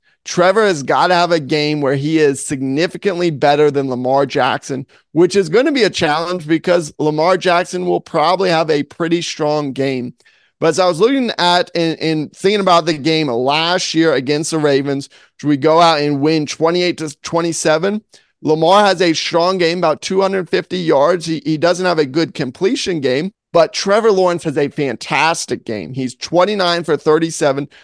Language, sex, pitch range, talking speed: English, male, 150-180 Hz, 180 wpm